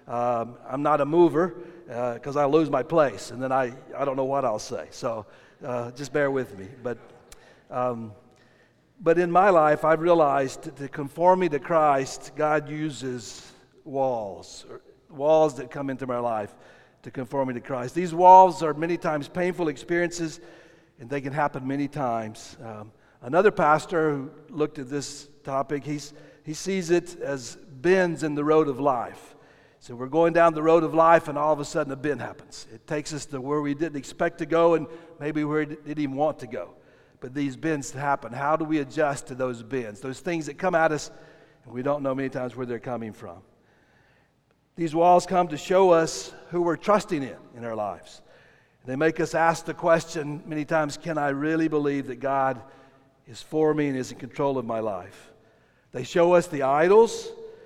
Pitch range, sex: 130-160 Hz, male